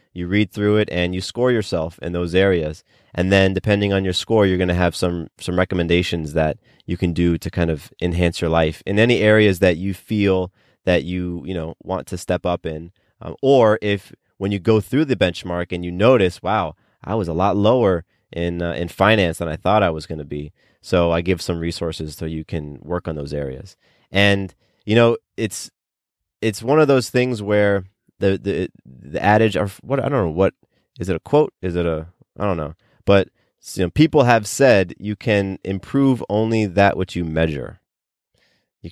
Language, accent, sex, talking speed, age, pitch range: English, American, male, 210 wpm, 30-49, 85-105 Hz